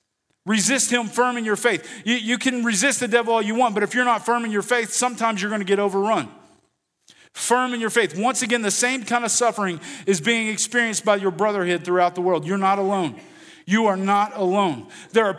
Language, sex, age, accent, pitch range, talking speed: English, male, 40-59, American, 200-230 Hz, 225 wpm